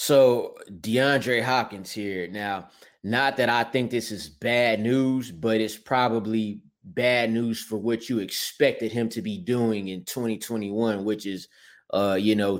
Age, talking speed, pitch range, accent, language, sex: 20-39, 155 wpm, 110-130 Hz, American, English, male